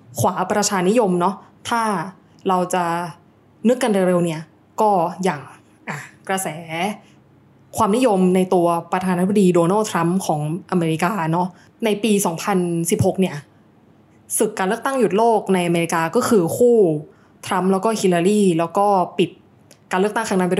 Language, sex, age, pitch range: Thai, female, 20-39, 170-205 Hz